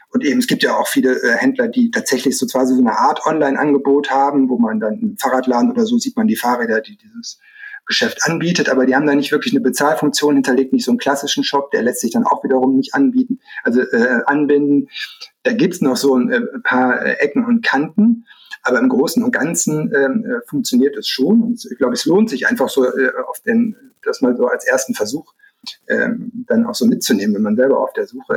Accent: German